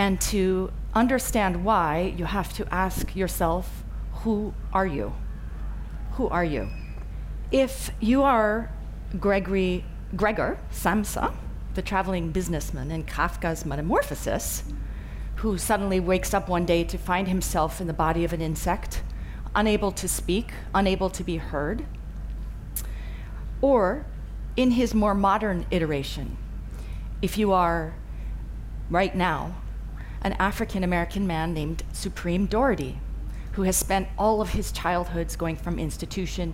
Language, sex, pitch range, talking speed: English, female, 160-200 Hz, 125 wpm